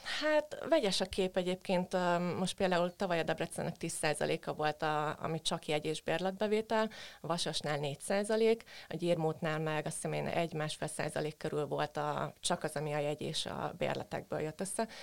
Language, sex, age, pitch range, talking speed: Hungarian, female, 30-49, 155-185 Hz, 155 wpm